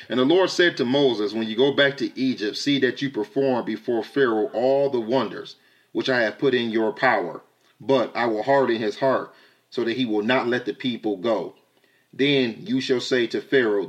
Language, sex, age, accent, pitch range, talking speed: English, male, 30-49, American, 110-135 Hz, 210 wpm